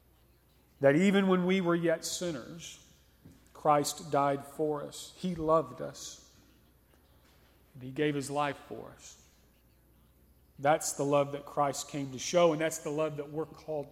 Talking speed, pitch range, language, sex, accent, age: 150 wpm, 125-160 Hz, English, male, American, 40-59